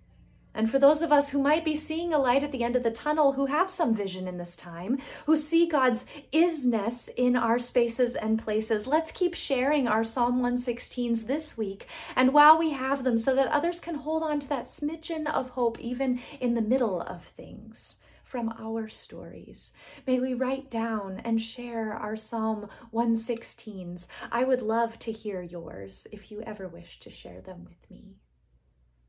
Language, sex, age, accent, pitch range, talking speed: English, female, 30-49, American, 215-280 Hz, 185 wpm